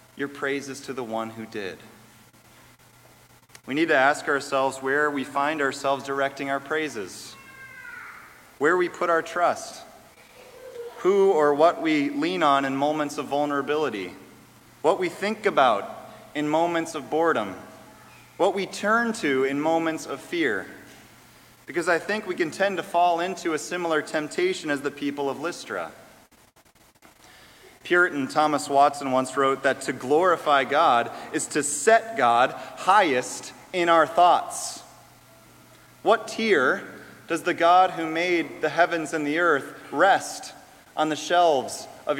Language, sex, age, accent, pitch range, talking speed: English, male, 30-49, American, 145-185 Hz, 145 wpm